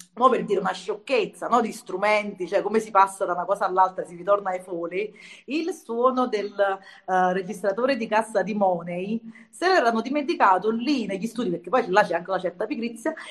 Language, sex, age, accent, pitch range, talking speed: Italian, female, 30-49, native, 190-260 Hz, 195 wpm